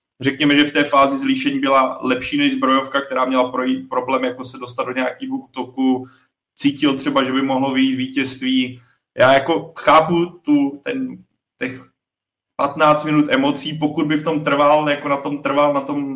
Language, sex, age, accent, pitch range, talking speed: Czech, male, 20-39, native, 125-140 Hz, 175 wpm